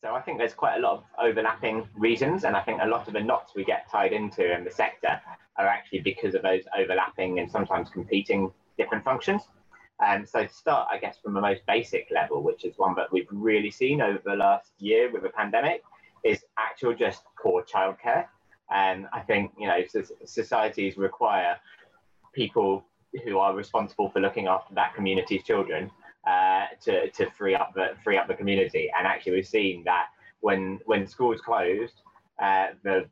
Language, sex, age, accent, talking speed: English, male, 20-39, British, 190 wpm